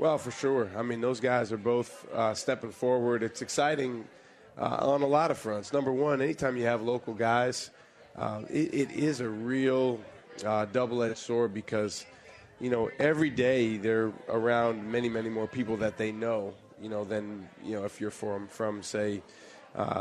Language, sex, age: English, male, 30-49